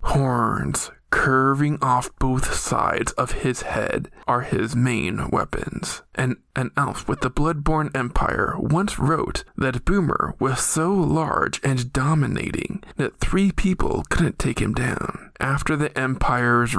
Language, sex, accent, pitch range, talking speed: English, male, American, 130-160 Hz, 135 wpm